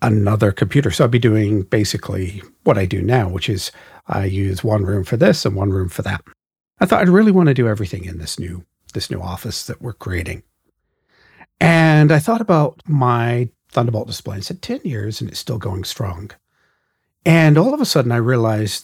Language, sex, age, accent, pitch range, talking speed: English, male, 50-69, American, 100-135 Hz, 205 wpm